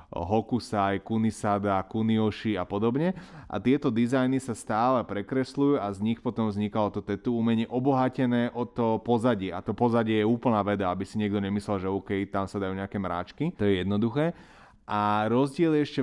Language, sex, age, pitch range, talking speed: Slovak, male, 30-49, 105-130 Hz, 175 wpm